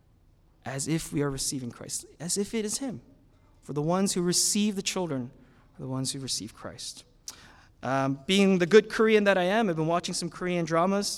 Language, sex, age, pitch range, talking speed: English, male, 20-39, 135-190 Hz, 205 wpm